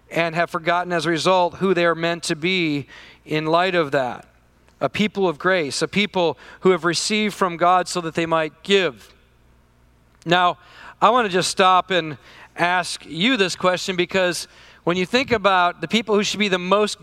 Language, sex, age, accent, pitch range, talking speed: English, male, 40-59, American, 170-215 Hz, 195 wpm